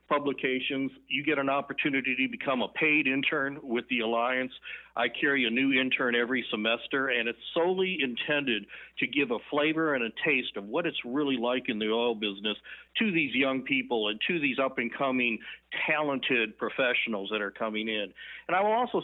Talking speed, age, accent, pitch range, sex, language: 185 wpm, 60-79, American, 115-150 Hz, male, English